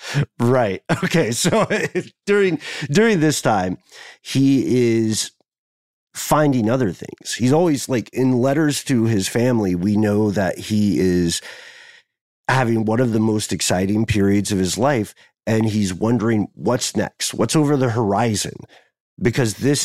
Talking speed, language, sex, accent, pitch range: 140 wpm, English, male, American, 100-130 Hz